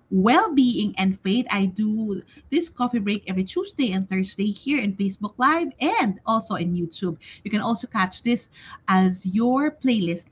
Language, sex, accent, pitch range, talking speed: English, female, Filipino, 190-265 Hz, 165 wpm